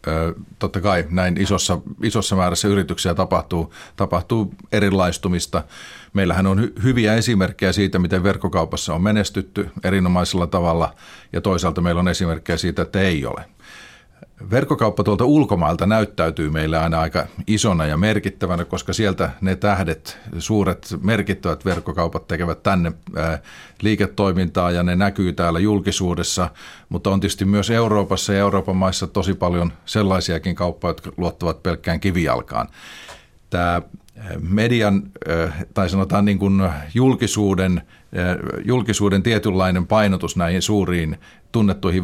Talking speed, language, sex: 120 wpm, Finnish, male